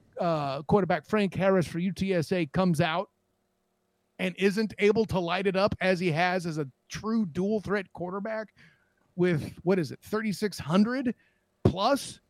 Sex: male